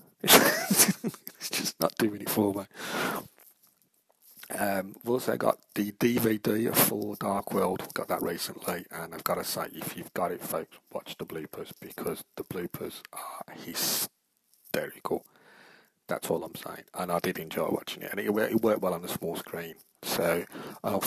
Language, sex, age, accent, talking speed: English, male, 40-59, British, 160 wpm